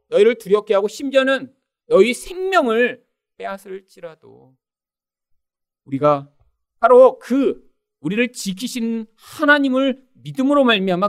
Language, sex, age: Korean, male, 40-59